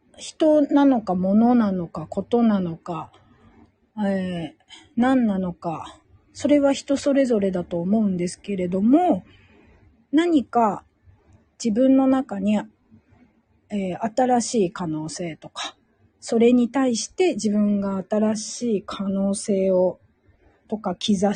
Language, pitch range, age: Japanese, 175-230 Hz, 40-59